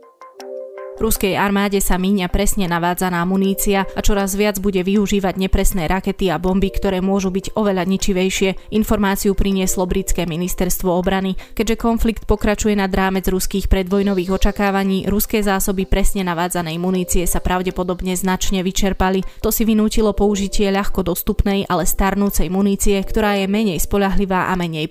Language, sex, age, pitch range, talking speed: Slovak, female, 20-39, 180-200 Hz, 140 wpm